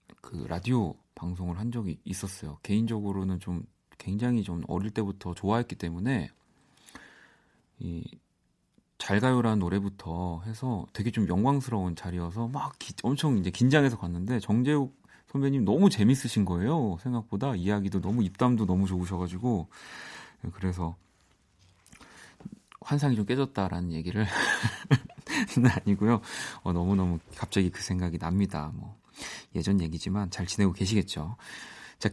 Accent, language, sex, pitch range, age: native, Korean, male, 95-130 Hz, 30-49